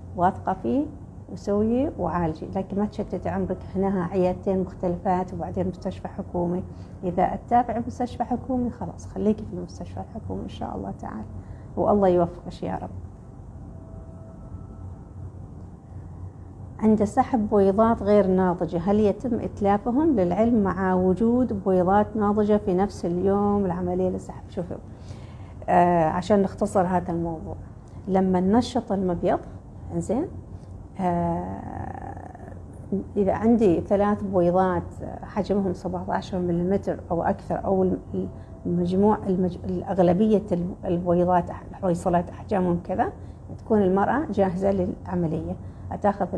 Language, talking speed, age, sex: Arabic, 105 wpm, 40-59, female